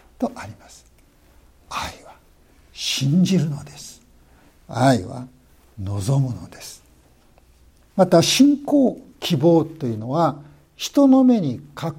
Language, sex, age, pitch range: Japanese, male, 60-79, 115-185 Hz